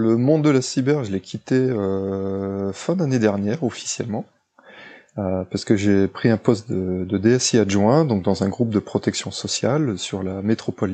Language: French